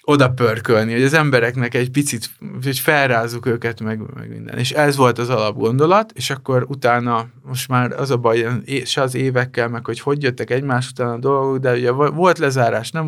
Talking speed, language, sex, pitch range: 190 wpm, Hungarian, male, 115-135 Hz